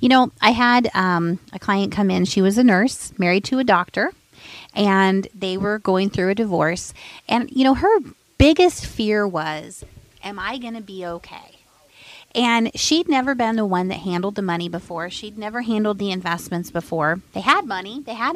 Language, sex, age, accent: English, female, 30-49, American